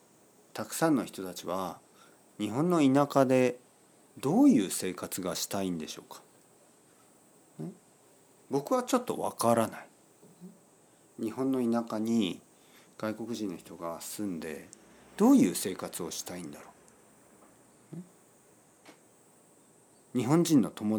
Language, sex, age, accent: Japanese, male, 50-69, native